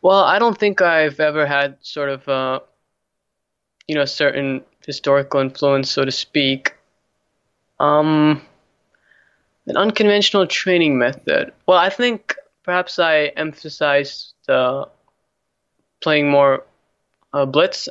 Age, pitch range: 20-39, 135-160 Hz